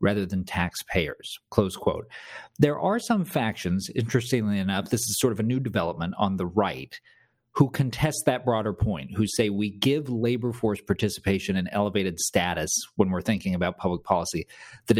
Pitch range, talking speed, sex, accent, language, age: 100-135 Hz, 170 wpm, male, American, English, 40-59